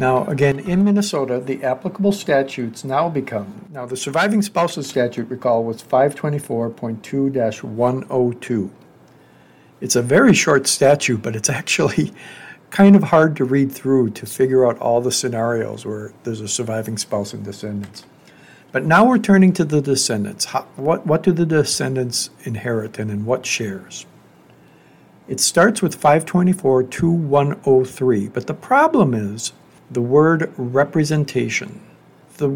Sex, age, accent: male, 60-79, American